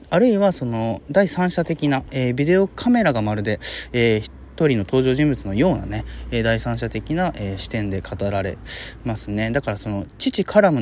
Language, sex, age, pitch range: Japanese, male, 20-39, 105-175 Hz